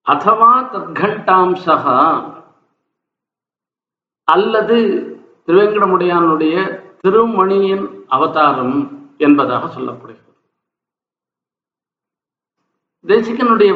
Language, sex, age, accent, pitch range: Tamil, male, 50-69, native, 170-225 Hz